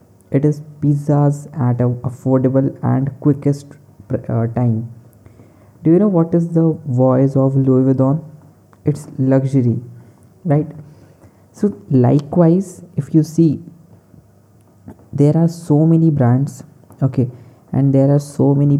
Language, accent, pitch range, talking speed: English, Indian, 120-145 Hz, 120 wpm